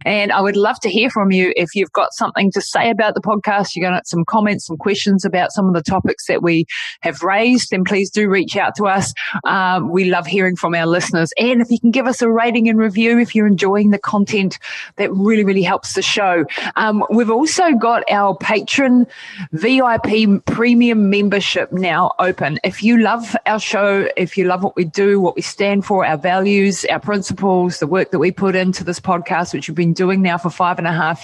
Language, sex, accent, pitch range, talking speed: English, female, Australian, 175-210 Hz, 225 wpm